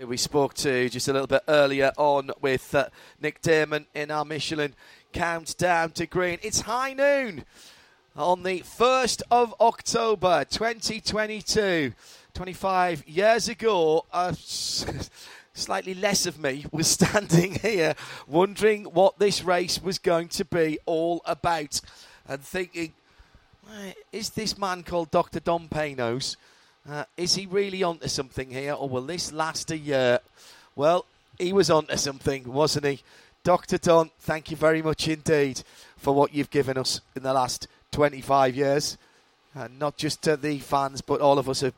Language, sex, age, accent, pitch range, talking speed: English, male, 40-59, British, 140-205 Hz, 155 wpm